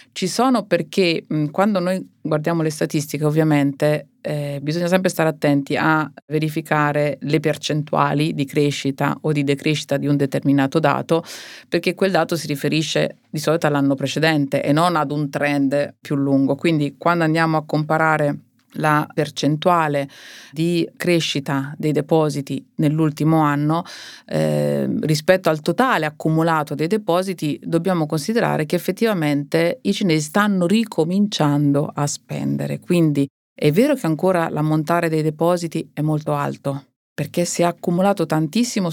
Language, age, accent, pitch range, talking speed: Italian, 30-49, native, 145-175 Hz, 135 wpm